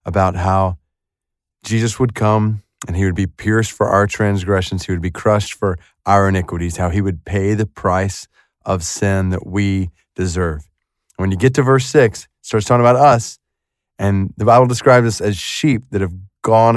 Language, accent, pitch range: English, American, 100-150 Hz